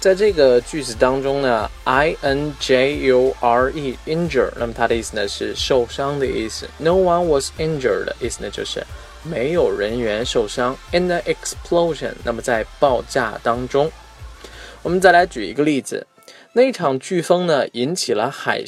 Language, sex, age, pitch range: Chinese, male, 20-39, 125-175 Hz